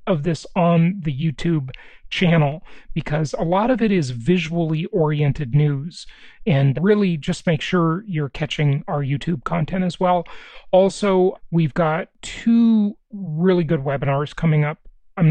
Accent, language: American, English